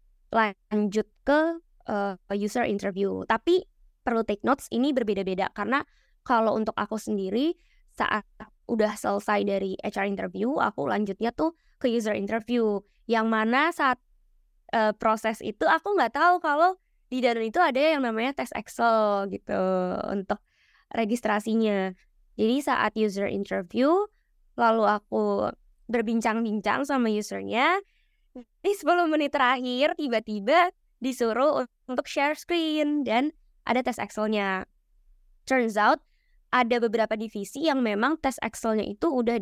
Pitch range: 210-275 Hz